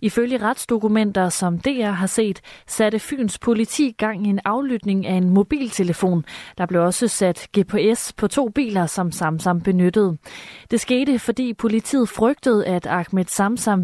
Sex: female